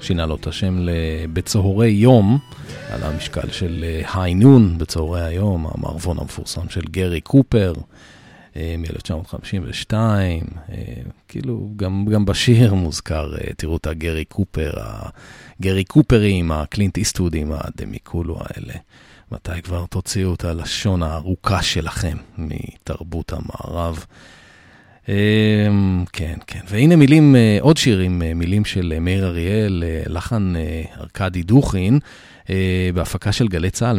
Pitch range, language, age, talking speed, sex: 85-105 Hz, Hebrew, 40-59, 110 wpm, male